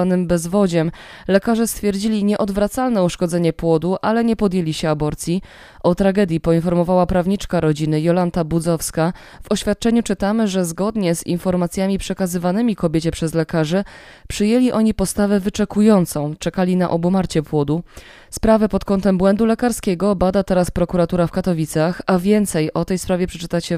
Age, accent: 20-39, native